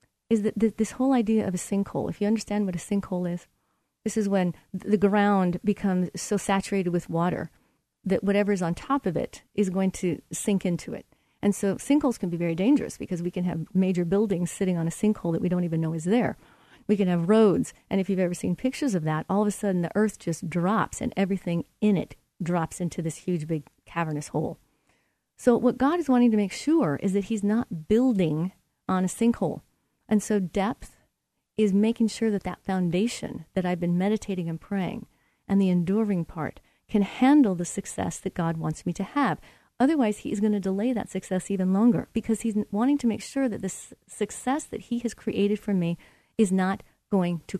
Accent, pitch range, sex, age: American, 180-215 Hz, female, 40-59